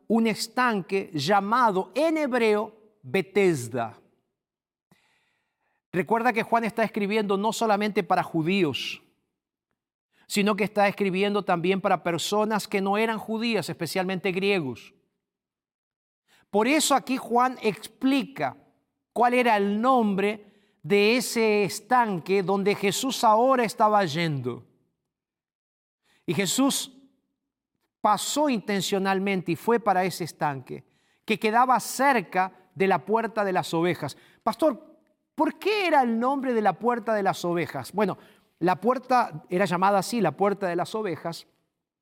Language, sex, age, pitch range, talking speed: Spanish, male, 50-69, 185-230 Hz, 125 wpm